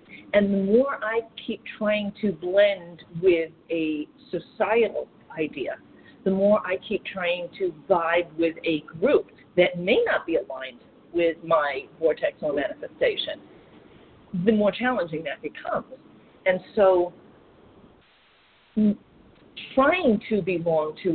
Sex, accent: female, American